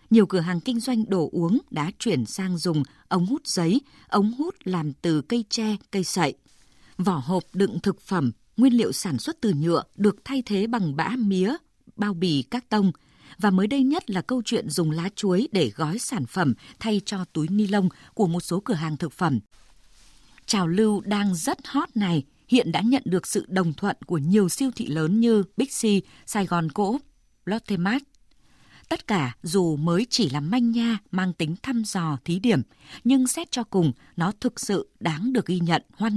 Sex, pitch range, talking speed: female, 170-230 Hz, 200 wpm